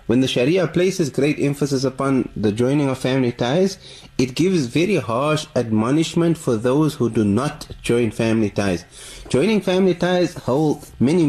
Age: 30-49